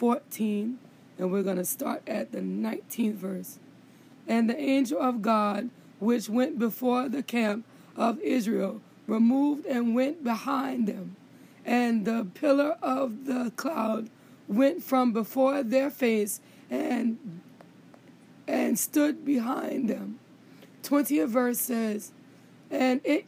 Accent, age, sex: American, 20-39, female